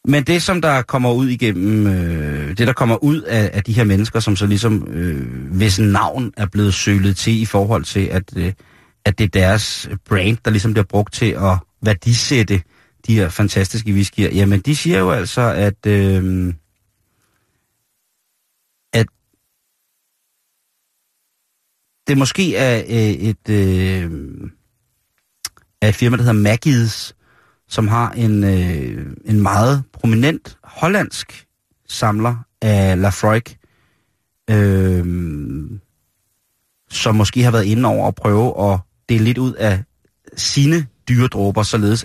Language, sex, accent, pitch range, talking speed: Danish, male, native, 95-115 Hz, 135 wpm